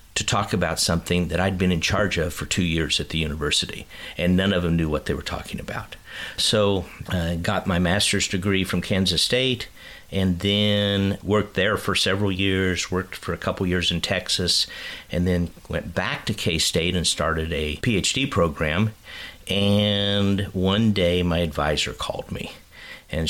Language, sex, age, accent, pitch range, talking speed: English, male, 50-69, American, 85-105 Hz, 175 wpm